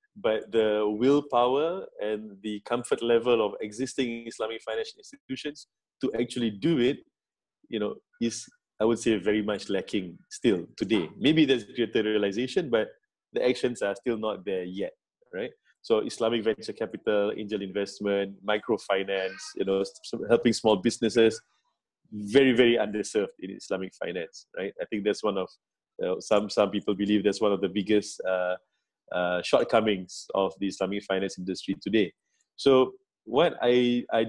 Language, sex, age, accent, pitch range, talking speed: English, male, 20-39, Malaysian, 105-135 Hz, 155 wpm